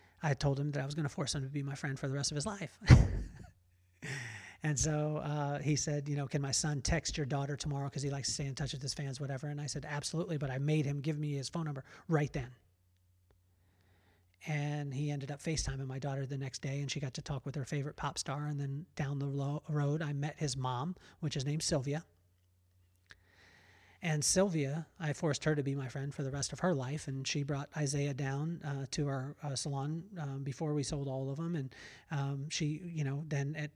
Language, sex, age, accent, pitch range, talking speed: English, male, 40-59, American, 135-150 Hz, 235 wpm